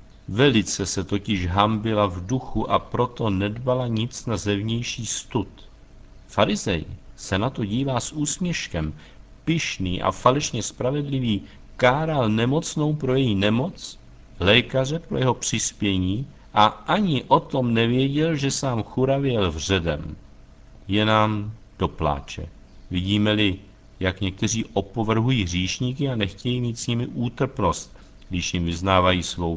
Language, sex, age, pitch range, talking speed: Czech, male, 50-69, 90-125 Hz, 125 wpm